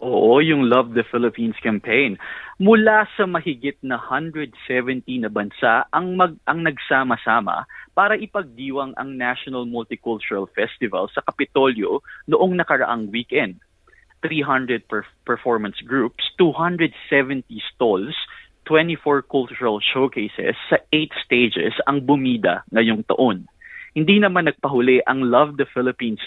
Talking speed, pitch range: 120 wpm, 125-155 Hz